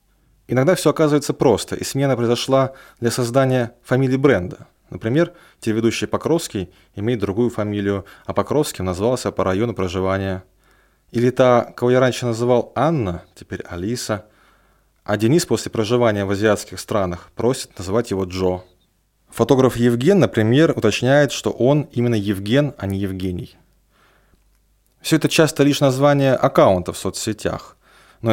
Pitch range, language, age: 95-130 Hz, Russian, 20-39